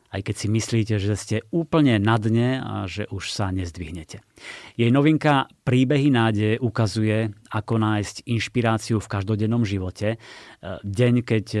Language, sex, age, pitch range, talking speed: Slovak, male, 30-49, 105-120 Hz, 140 wpm